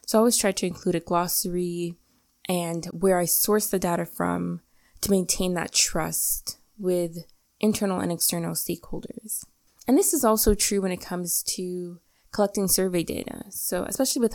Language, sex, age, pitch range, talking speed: English, female, 20-39, 170-205 Hz, 165 wpm